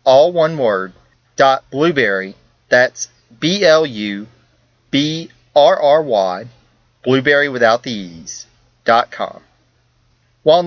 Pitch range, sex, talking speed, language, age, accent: 120-160 Hz, male, 80 wpm, English, 30-49, American